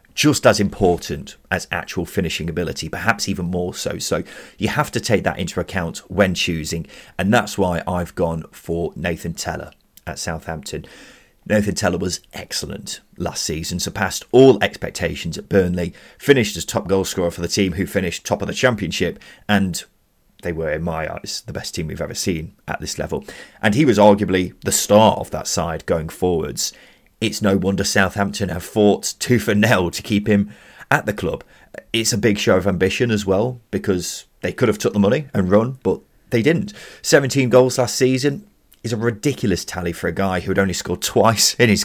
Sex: male